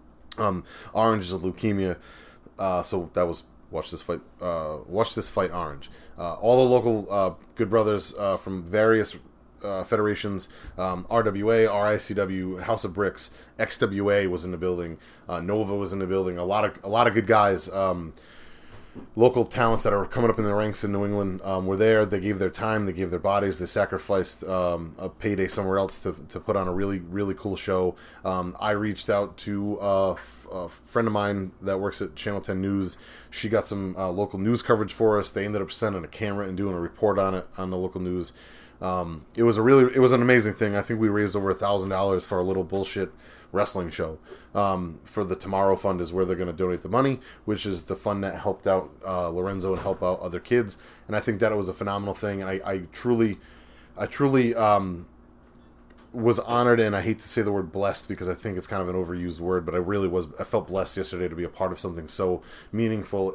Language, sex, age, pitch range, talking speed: English, male, 30-49, 90-105 Hz, 225 wpm